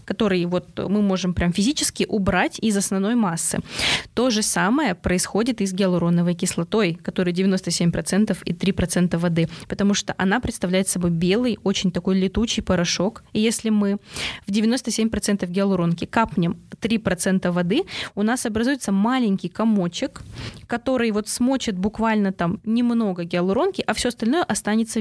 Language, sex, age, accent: Russian, female, 20-39, native